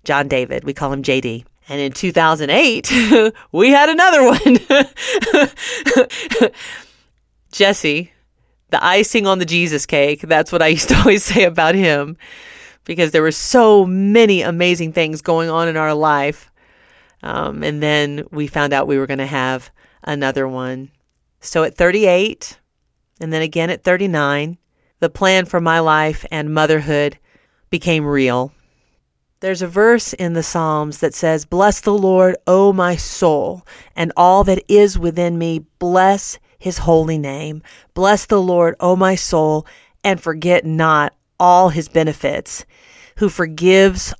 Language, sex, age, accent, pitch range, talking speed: English, female, 40-59, American, 150-190 Hz, 150 wpm